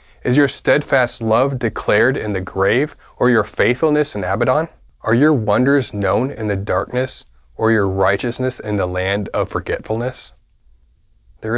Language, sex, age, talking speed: English, male, 30-49, 150 wpm